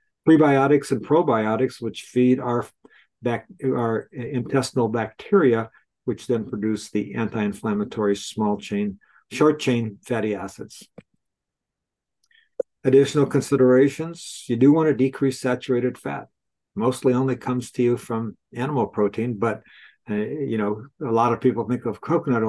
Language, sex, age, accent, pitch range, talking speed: English, male, 60-79, American, 110-135 Hz, 130 wpm